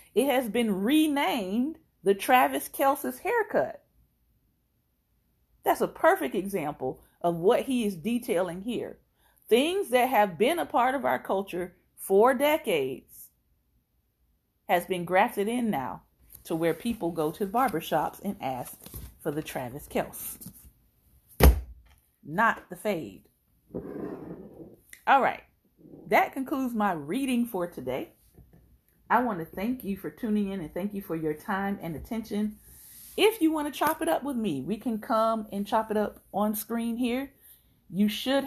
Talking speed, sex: 145 wpm, female